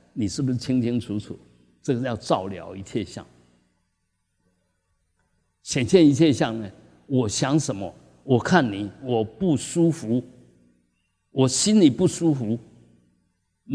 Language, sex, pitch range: Chinese, male, 90-140 Hz